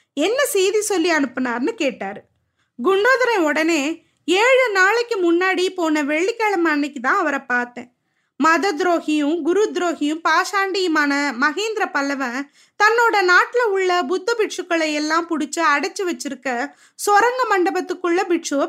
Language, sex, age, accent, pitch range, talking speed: Tamil, female, 20-39, native, 305-405 Hz, 110 wpm